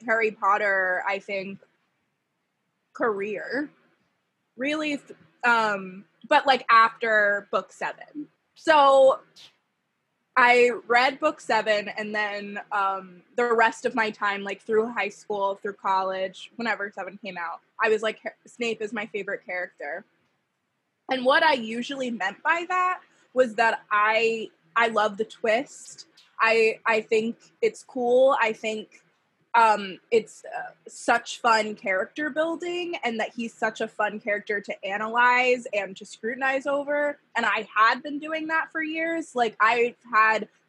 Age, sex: 20-39, female